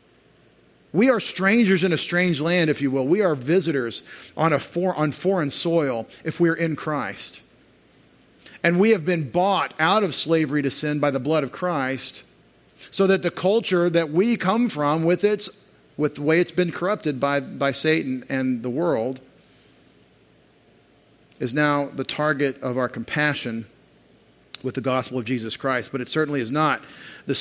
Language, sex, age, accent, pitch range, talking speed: English, male, 40-59, American, 140-175 Hz, 175 wpm